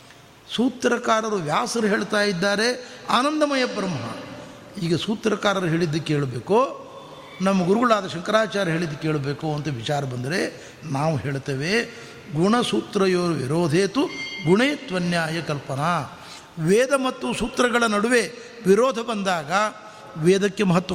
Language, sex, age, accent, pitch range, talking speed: Kannada, male, 60-79, native, 165-225 Hz, 90 wpm